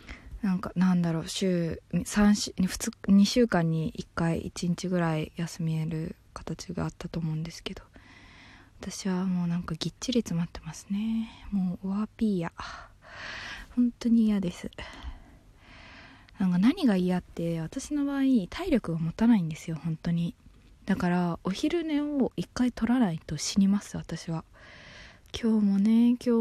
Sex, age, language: female, 20-39, Japanese